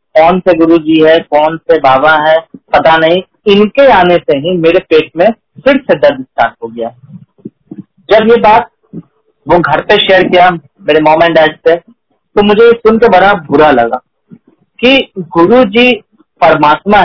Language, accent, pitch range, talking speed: Hindi, native, 160-215 Hz, 165 wpm